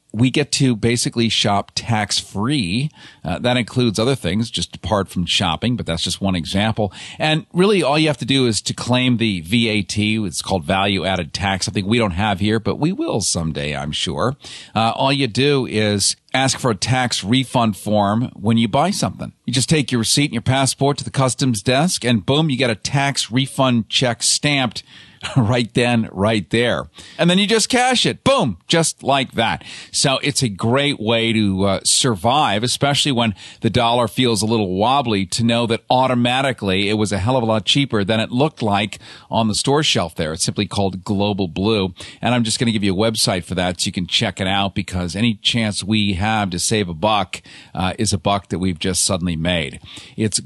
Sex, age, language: male, 40-59, English